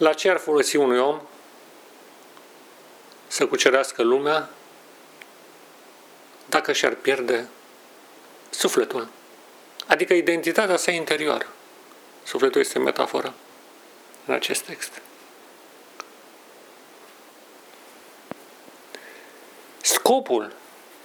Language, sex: Romanian, male